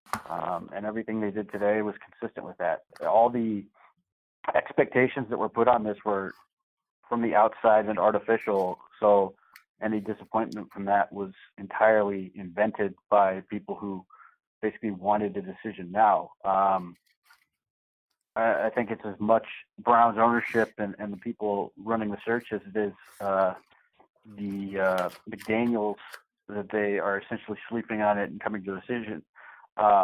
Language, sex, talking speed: English, male, 150 wpm